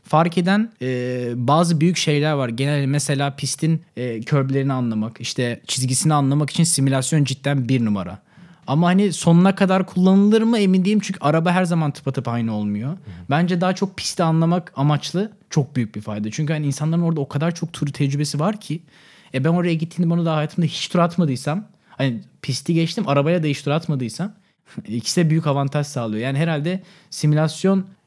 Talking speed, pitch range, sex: 180 wpm, 125-170 Hz, male